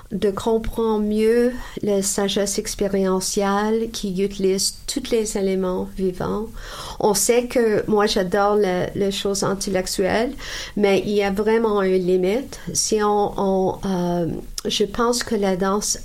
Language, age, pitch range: French, 50-69, 180-210 Hz